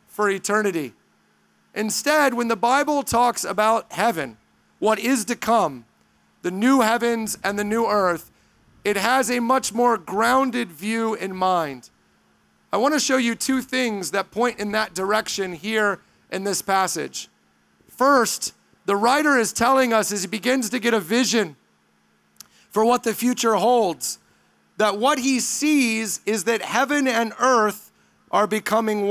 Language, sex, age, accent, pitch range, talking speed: English, male, 30-49, American, 205-250 Hz, 155 wpm